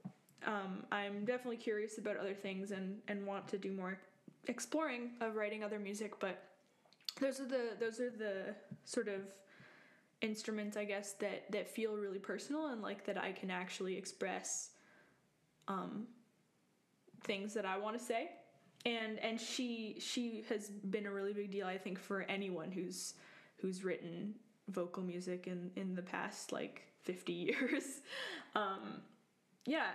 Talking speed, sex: 155 wpm, female